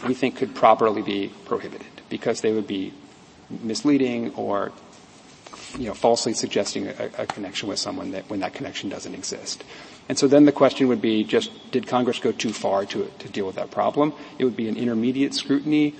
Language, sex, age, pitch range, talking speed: English, male, 40-59, 120-140 Hz, 195 wpm